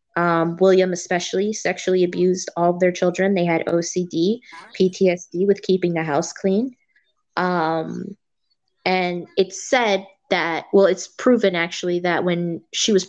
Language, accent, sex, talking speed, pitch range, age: English, American, female, 140 wpm, 175-200 Hz, 20-39